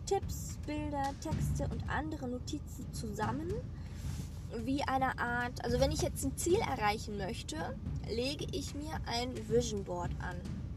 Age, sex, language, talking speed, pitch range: 20-39, female, German, 140 wpm, 75-105 Hz